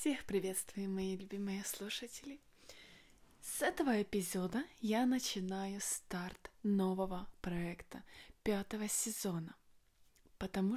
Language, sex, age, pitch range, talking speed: Russian, female, 20-39, 180-235 Hz, 90 wpm